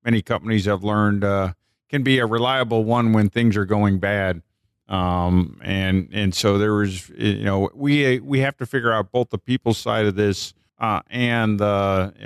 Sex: male